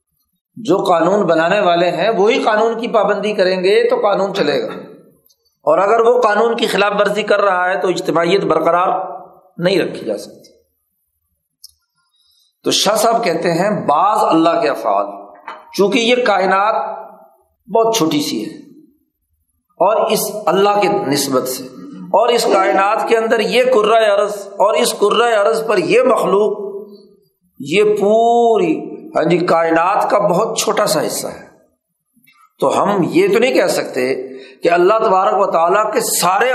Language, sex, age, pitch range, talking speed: Urdu, male, 50-69, 175-235 Hz, 155 wpm